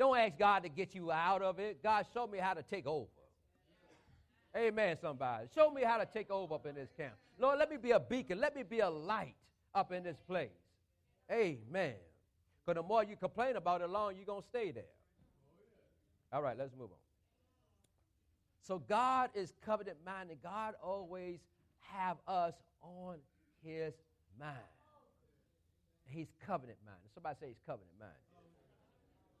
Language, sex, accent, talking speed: English, male, American, 165 wpm